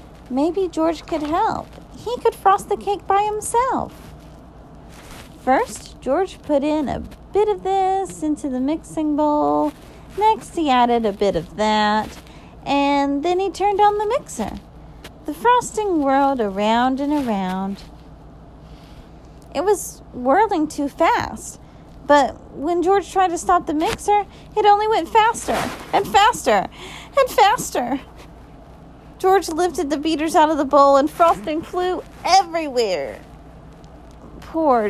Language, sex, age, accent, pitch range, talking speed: English, female, 40-59, American, 255-405 Hz, 130 wpm